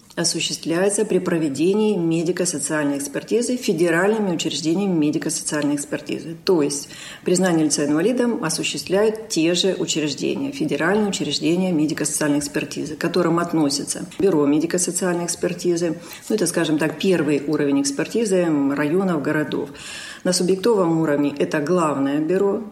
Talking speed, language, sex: 115 wpm, Russian, female